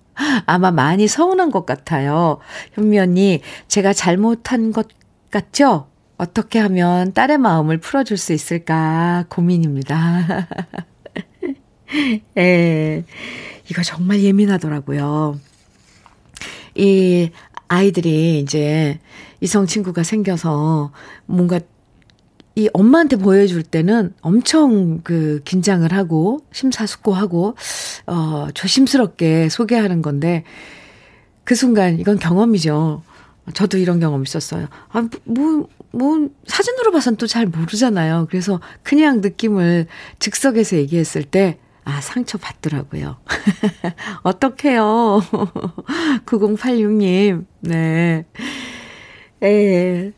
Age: 40-59